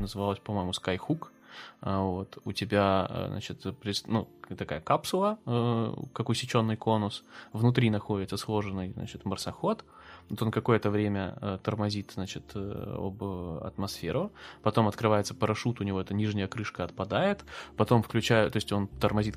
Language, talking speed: Russian, 120 wpm